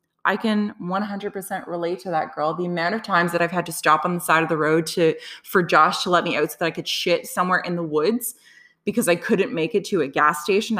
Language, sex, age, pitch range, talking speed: English, female, 20-39, 165-210 Hz, 260 wpm